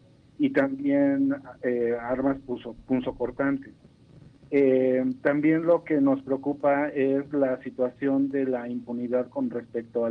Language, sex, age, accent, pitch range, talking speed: Spanish, male, 50-69, Mexican, 125-150 Hz, 115 wpm